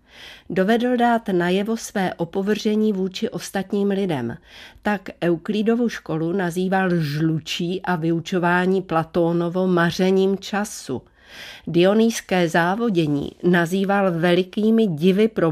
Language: Czech